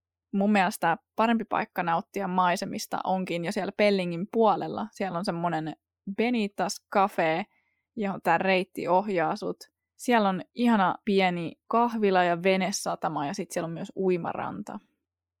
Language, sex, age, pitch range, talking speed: Finnish, female, 20-39, 165-205 Hz, 130 wpm